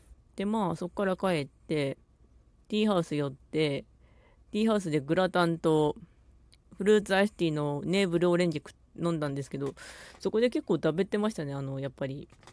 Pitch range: 150-210 Hz